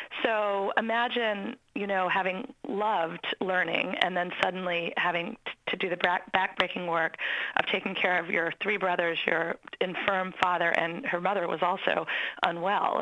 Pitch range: 185-245 Hz